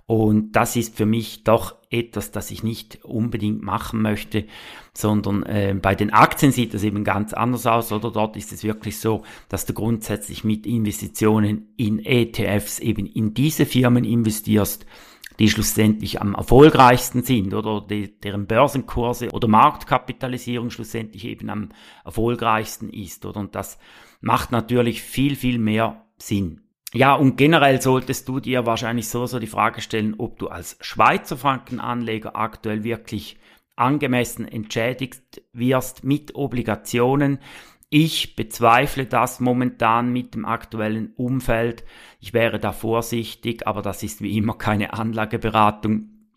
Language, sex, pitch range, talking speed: German, male, 105-125 Hz, 140 wpm